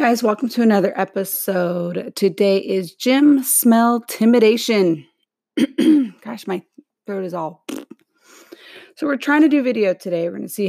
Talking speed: 145 wpm